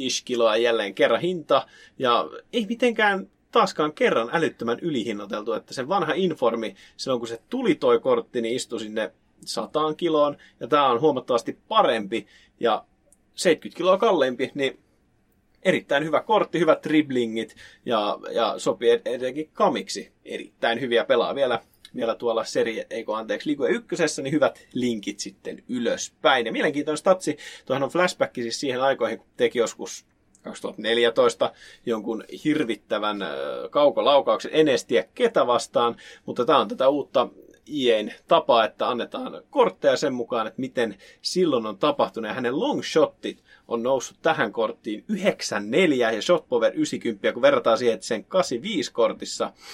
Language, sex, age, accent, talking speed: Finnish, male, 30-49, native, 140 wpm